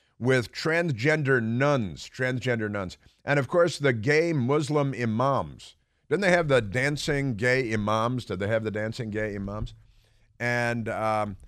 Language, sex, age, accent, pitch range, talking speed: English, male, 50-69, American, 100-130 Hz, 145 wpm